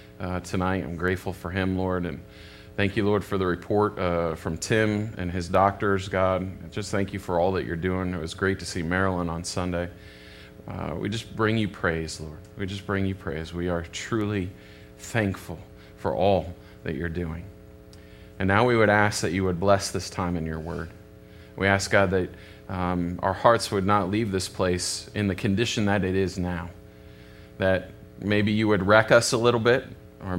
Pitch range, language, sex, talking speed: 85-105 Hz, English, male, 200 wpm